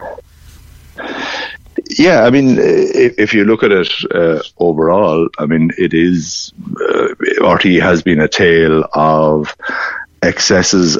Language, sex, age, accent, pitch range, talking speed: English, male, 50-69, Irish, 80-90 Hz, 120 wpm